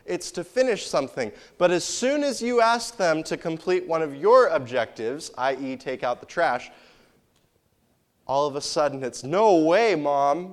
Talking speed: 170 wpm